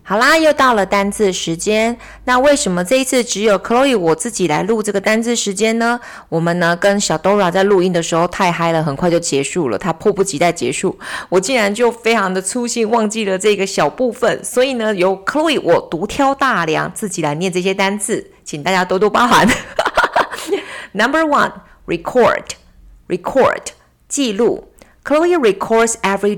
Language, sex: Chinese, female